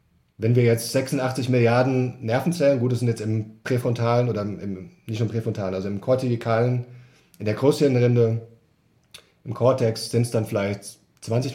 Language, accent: German, German